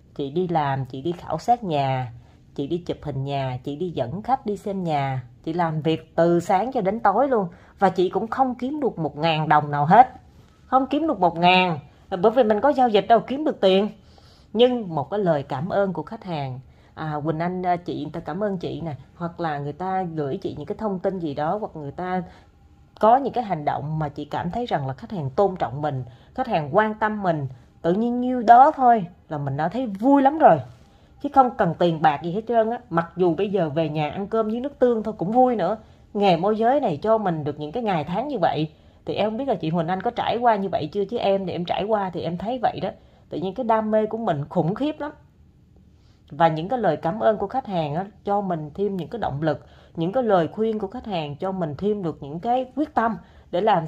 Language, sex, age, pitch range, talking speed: Vietnamese, female, 20-39, 160-225 Hz, 250 wpm